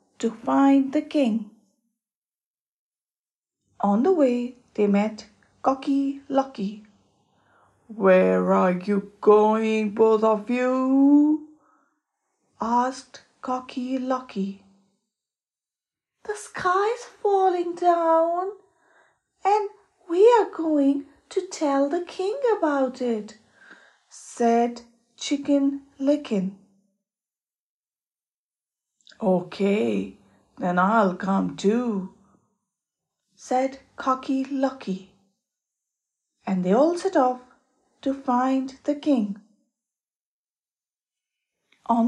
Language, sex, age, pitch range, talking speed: English, female, 30-49, 215-300 Hz, 80 wpm